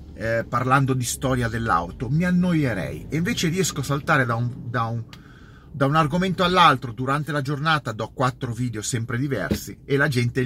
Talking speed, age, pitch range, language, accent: 160 wpm, 30-49, 110-155 Hz, Italian, native